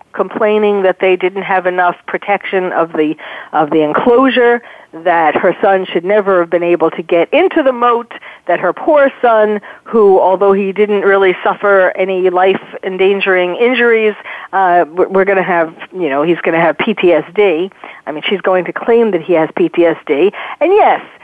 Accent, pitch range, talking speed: American, 185-245 Hz, 180 wpm